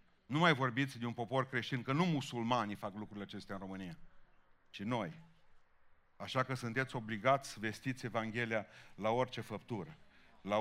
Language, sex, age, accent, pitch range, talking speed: Romanian, male, 40-59, native, 115-150 Hz, 160 wpm